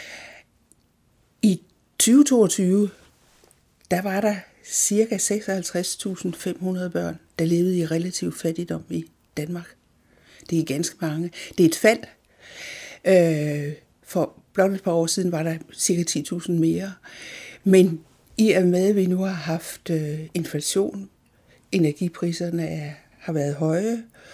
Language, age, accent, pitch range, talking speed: Danish, 60-79, native, 155-190 Hz, 115 wpm